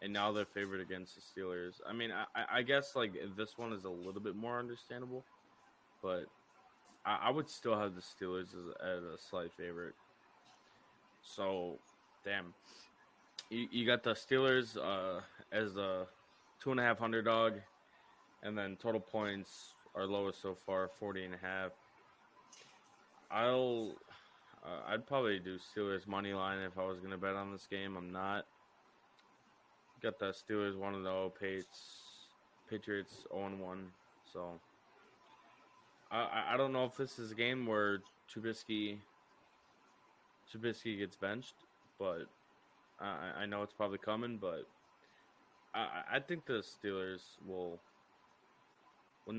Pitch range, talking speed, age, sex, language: 95-110 Hz, 140 wpm, 20-39, male, English